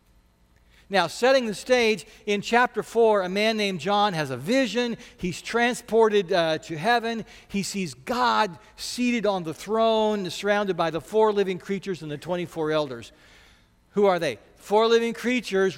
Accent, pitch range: American, 135-210 Hz